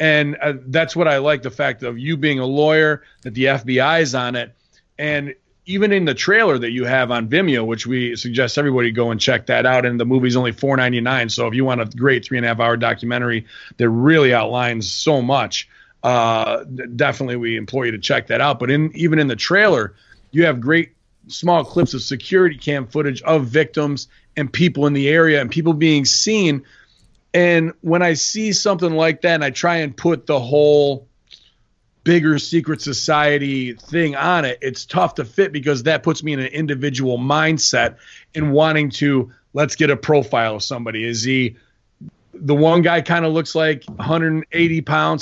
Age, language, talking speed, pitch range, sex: 40-59, English, 190 wpm, 125-160 Hz, male